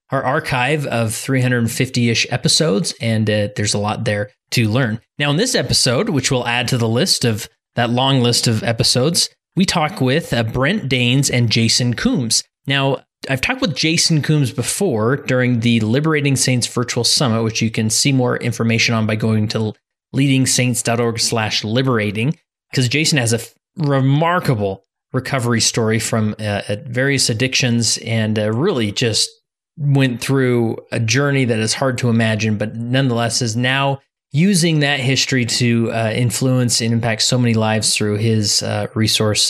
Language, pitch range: English, 110-135 Hz